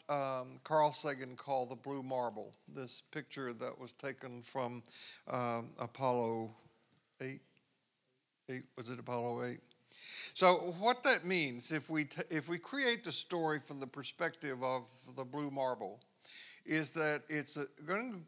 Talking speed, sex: 140 wpm, male